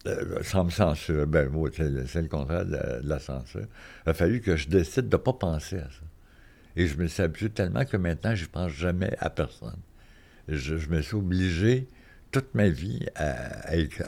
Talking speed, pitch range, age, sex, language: 215 wpm, 75-100 Hz, 60-79, male, French